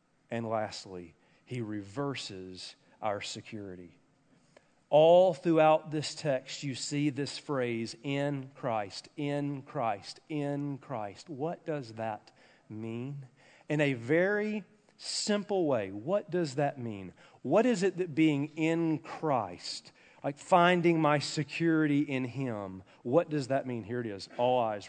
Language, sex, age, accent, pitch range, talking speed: English, male, 40-59, American, 115-155 Hz, 135 wpm